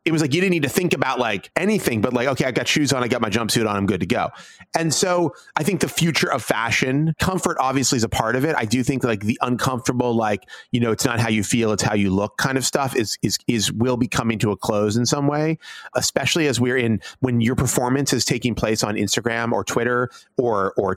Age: 30-49